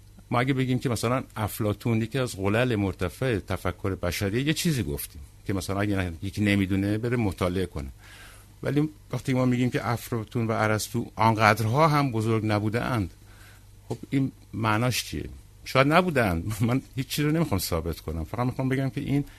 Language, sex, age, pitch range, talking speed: Persian, male, 60-79, 100-125 Hz, 165 wpm